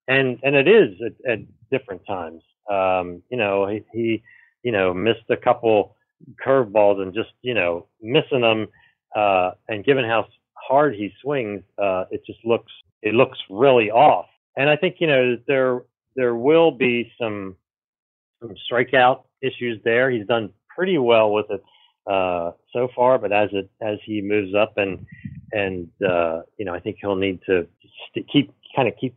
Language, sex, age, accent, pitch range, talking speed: English, male, 40-59, American, 95-125 Hz, 175 wpm